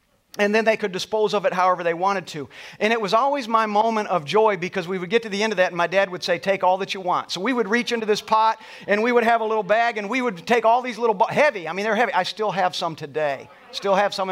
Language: English